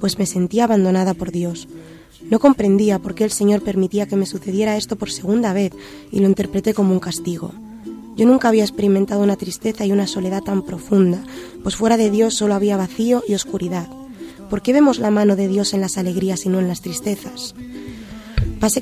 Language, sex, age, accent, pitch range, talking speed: Spanish, female, 20-39, Spanish, 185-220 Hz, 200 wpm